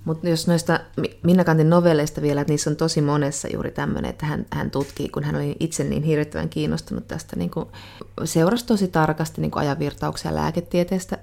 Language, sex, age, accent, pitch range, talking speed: Finnish, female, 30-49, native, 105-165 Hz, 175 wpm